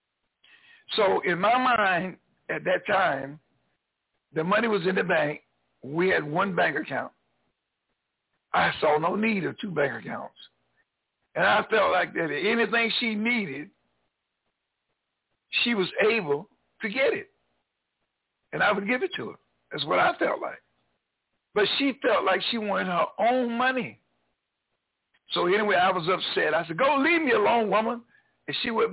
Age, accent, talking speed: 60-79, American, 160 wpm